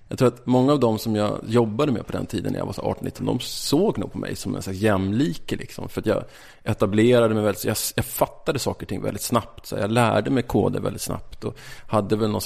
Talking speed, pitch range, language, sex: 240 wpm, 105-125 Hz, English, male